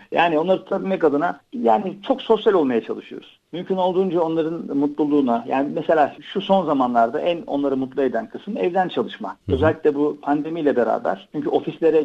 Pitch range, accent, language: 130-165 Hz, native, Turkish